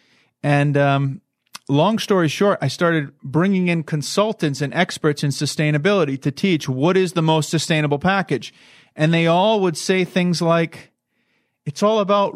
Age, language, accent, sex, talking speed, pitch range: 30-49, English, American, male, 155 wpm, 140-175 Hz